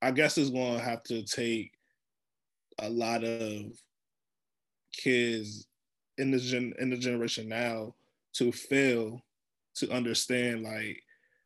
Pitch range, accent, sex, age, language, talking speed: 120-135 Hz, American, male, 20-39, English, 120 wpm